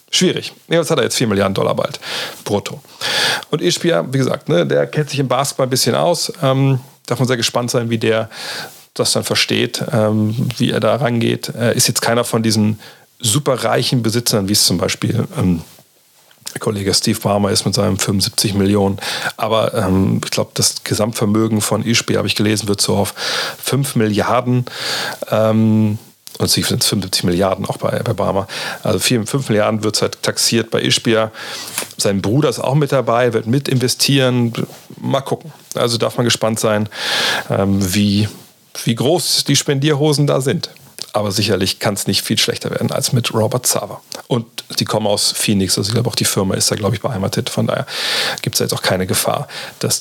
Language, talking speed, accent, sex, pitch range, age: German, 190 wpm, German, male, 105-125 Hz, 40-59